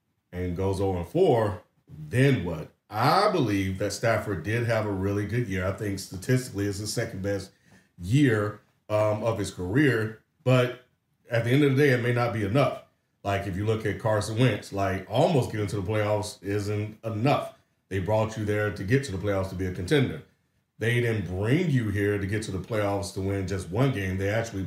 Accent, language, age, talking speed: American, English, 40-59, 205 wpm